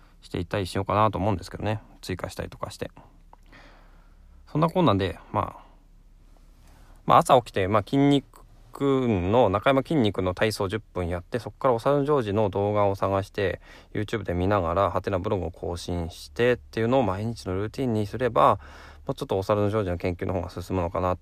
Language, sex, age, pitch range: Japanese, male, 20-39, 90-125 Hz